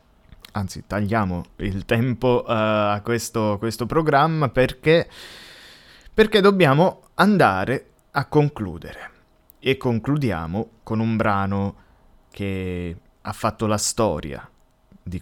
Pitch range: 100-135 Hz